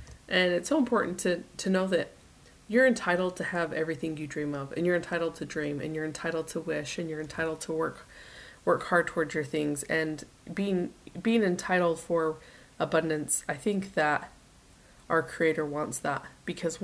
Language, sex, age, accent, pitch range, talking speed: English, female, 20-39, American, 150-175 Hz, 180 wpm